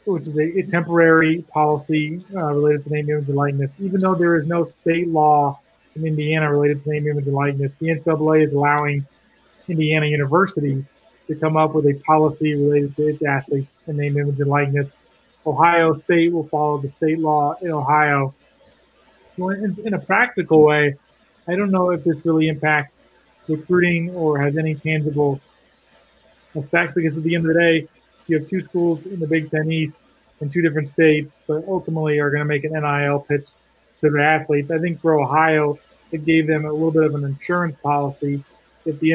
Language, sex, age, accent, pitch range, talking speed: English, male, 30-49, American, 145-160 Hz, 190 wpm